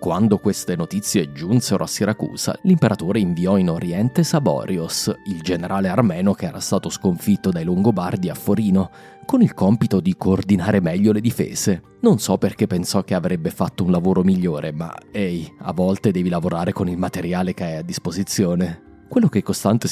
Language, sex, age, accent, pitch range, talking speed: Italian, male, 30-49, native, 90-130 Hz, 170 wpm